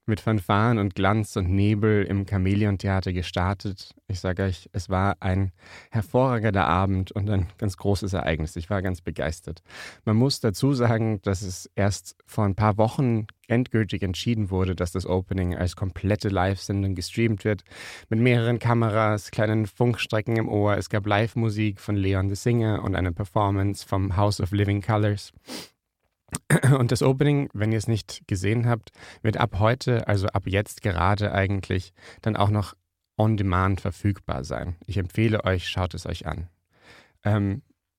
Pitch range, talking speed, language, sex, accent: 95-110 Hz, 160 wpm, German, male, German